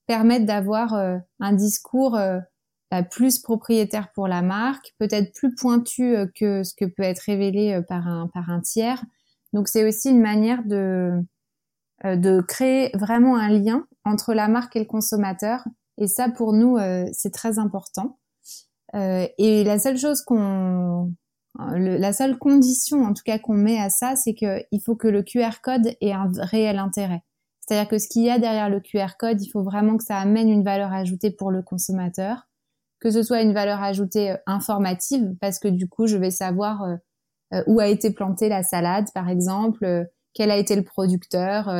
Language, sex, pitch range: French, female, 190-225 Hz